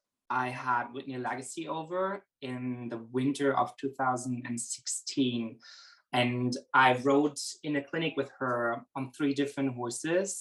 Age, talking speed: 20-39, 125 wpm